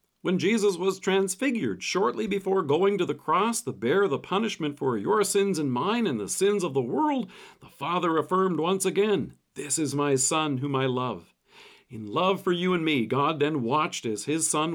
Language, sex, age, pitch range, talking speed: English, male, 50-69, 140-190 Hz, 200 wpm